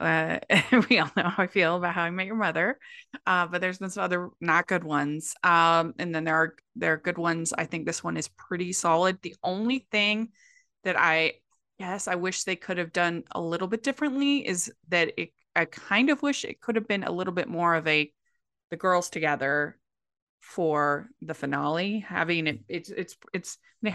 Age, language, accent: 20-39, English, American